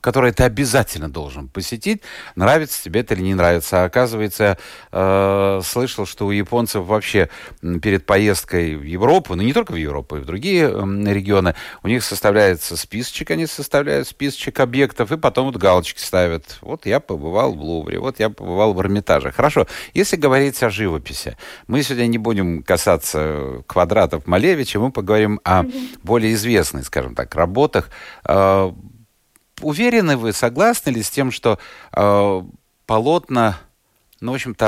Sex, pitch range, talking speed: male, 95-150 Hz, 155 wpm